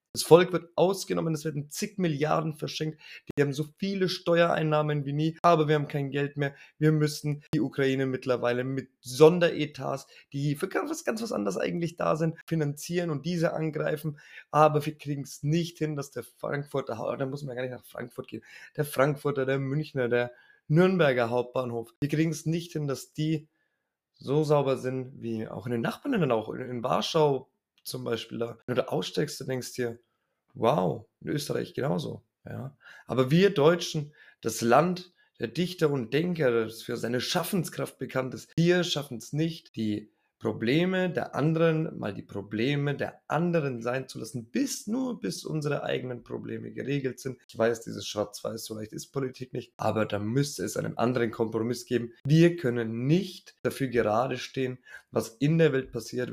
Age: 20-39